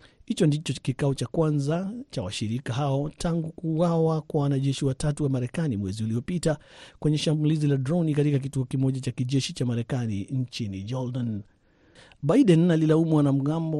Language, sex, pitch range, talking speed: Swahili, male, 130-155 Hz, 145 wpm